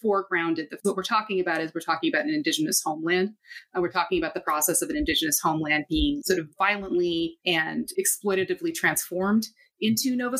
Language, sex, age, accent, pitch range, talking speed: English, female, 30-49, American, 175-250 Hz, 180 wpm